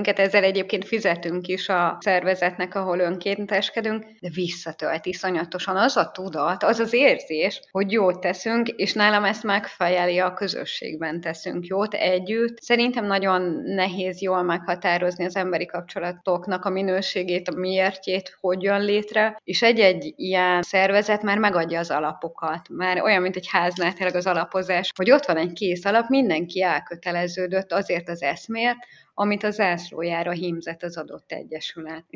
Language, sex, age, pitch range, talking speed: Hungarian, female, 20-39, 175-200 Hz, 140 wpm